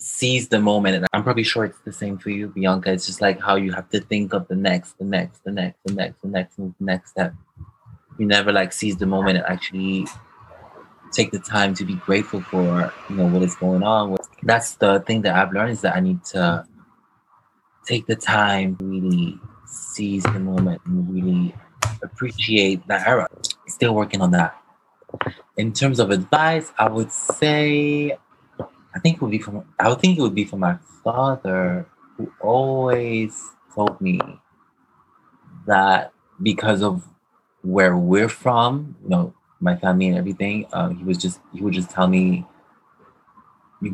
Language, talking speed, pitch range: English, 180 wpm, 95-115 Hz